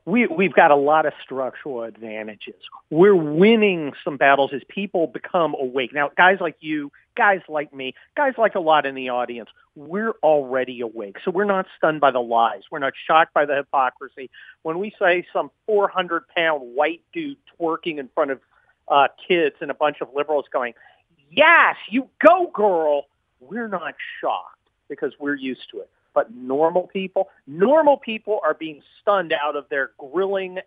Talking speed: 170 wpm